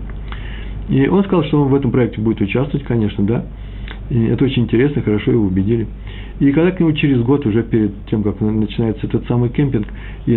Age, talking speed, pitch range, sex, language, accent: 50-69, 190 wpm, 105-150 Hz, male, Russian, native